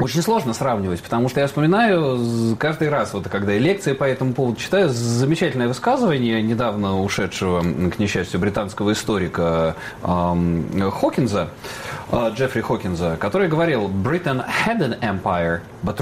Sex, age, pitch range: male, 30-49, 100-140 Hz